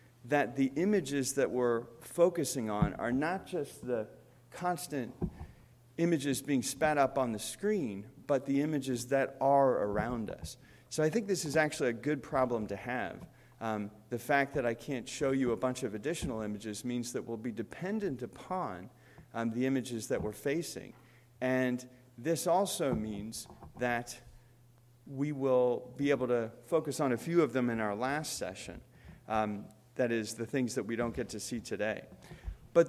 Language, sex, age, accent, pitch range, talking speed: English, male, 40-59, American, 120-150 Hz, 170 wpm